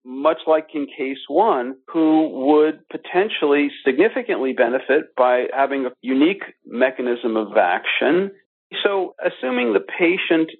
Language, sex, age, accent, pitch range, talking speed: English, male, 50-69, American, 135-175 Hz, 120 wpm